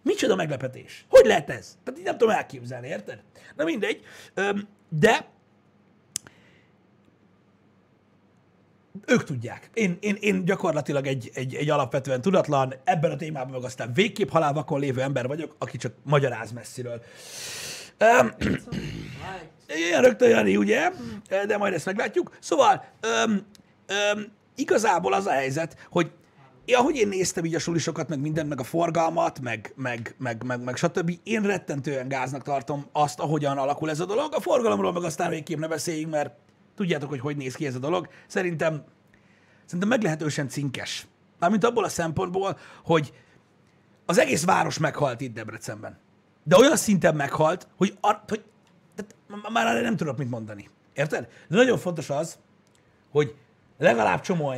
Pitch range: 135-190 Hz